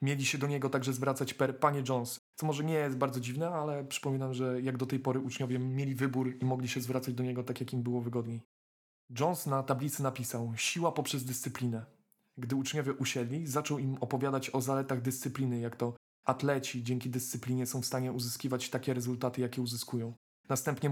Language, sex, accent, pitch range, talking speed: Polish, male, native, 125-145 Hz, 190 wpm